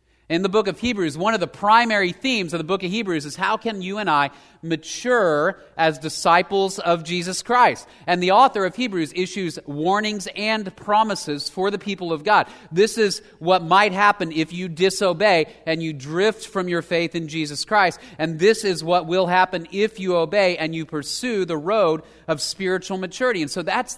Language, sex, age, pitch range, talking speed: English, male, 30-49, 125-190 Hz, 195 wpm